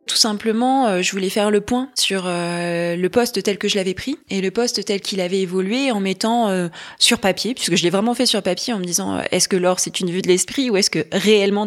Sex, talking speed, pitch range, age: female, 245 wpm, 180-220 Hz, 20-39